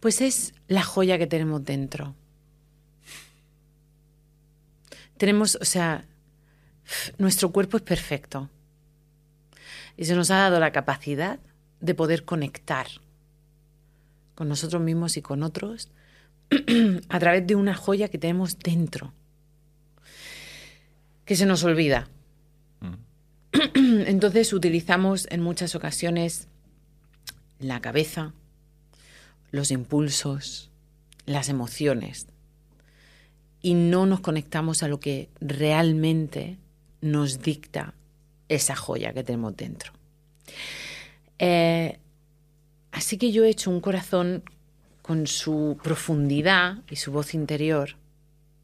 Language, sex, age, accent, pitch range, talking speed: Spanish, female, 40-59, Spanish, 150-170 Hz, 100 wpm